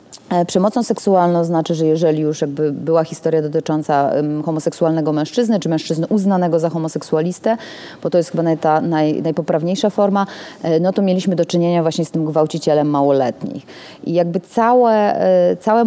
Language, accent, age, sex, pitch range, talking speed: Polish, native, 30-49, female, 170-205 Hz, 135 wpm